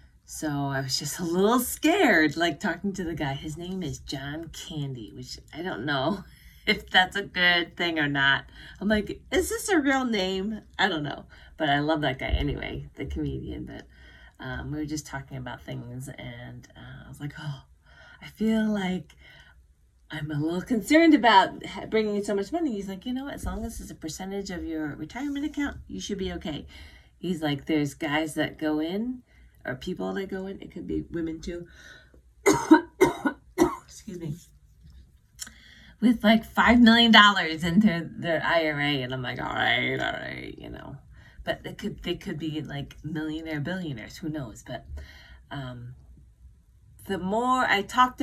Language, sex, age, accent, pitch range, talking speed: English, female, 30-49, American, 135-200 Hz, 180 wpm